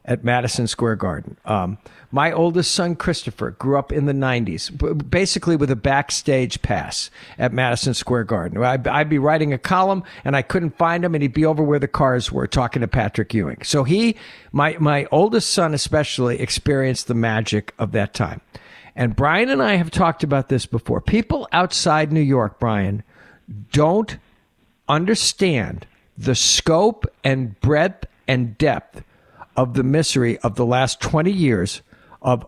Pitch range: 125-165 Hz